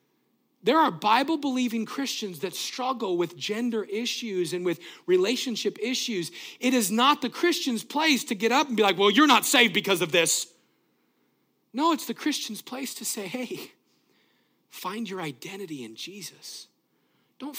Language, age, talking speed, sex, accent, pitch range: English, 40-59, 155 wpm, male, American, 145-220 Hz